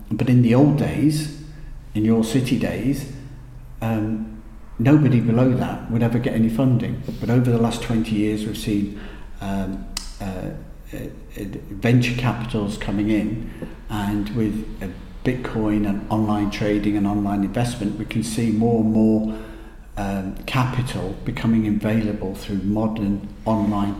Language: English